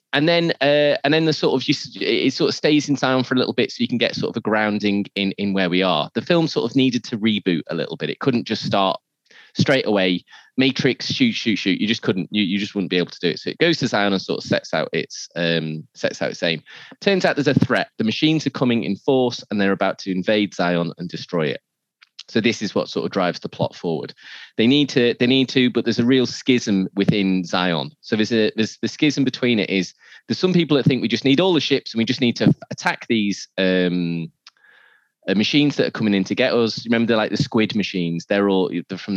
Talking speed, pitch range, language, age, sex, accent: 255 wpm, 100-135 Hz, English, 20-39, male, British